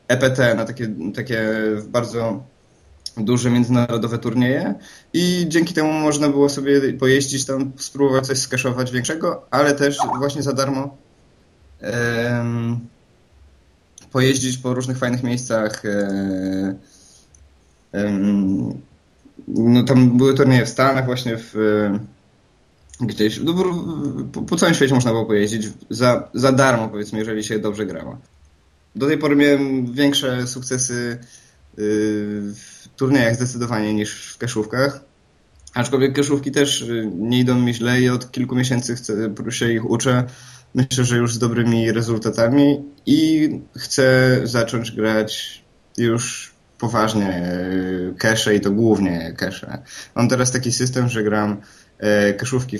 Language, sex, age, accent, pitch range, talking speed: Polish, male, 20-39, native, 105-130 Hz, 115 wpm